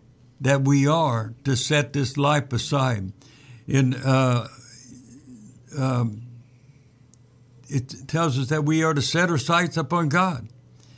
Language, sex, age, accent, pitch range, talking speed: English, male, 60-79, American, 125-155 Hz, 115 wpm